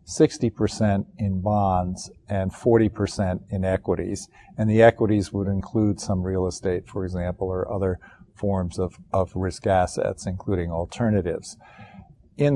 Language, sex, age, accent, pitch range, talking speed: English, male, 50-69, American, 95-115 Hz, 125 wpm